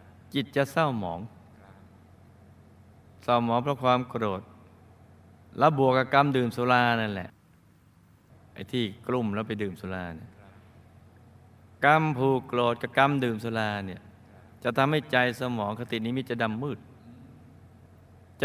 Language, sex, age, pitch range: Thai, male, 20-39, 100-130 Hz